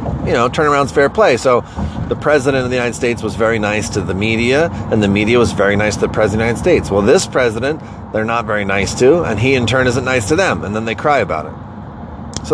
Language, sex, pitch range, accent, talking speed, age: English, male, 110-150 Hz, American, 260 wpm, 30-49